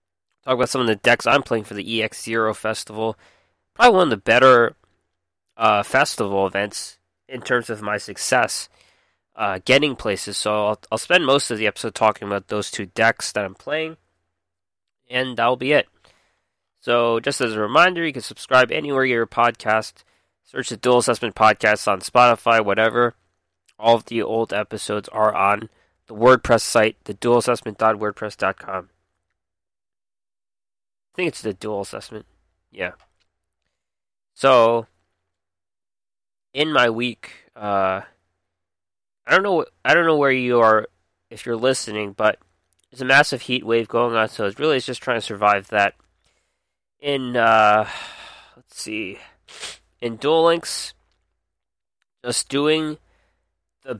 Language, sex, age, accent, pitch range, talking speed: English, male, 20-39, American, 95-125 Hz, 145 wpm